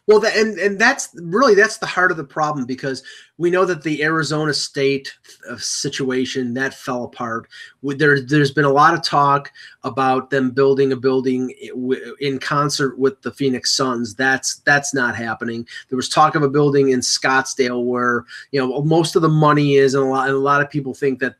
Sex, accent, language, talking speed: male, American, English, 200 wpm